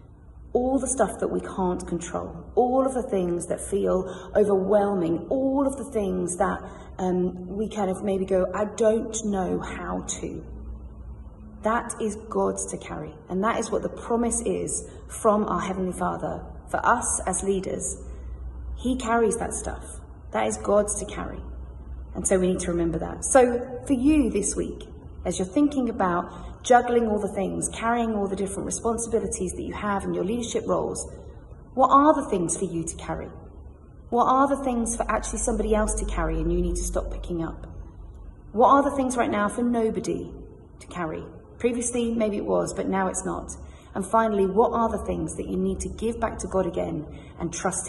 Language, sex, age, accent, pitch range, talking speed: English, female, 30-49, British, 170-230 Hz, 190 wpm